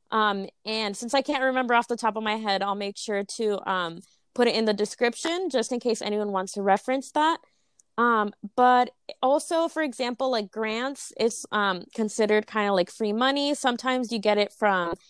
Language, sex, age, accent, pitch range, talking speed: English, female, 20-39, American, 200-235 Hz, 195 wpm